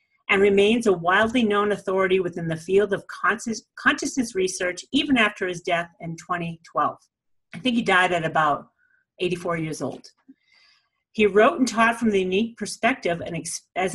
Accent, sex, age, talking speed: American, female, 40-59, 155 wpm